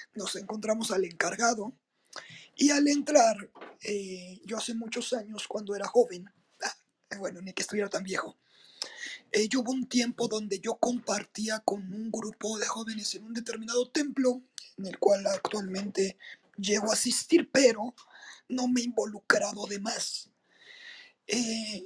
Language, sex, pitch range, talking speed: Spanish, male, 200-240 Hz, 145 wpm